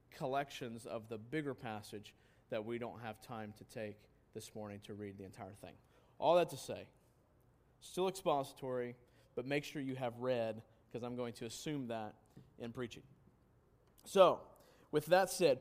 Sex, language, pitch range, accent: male, English, 120-150 Hz, American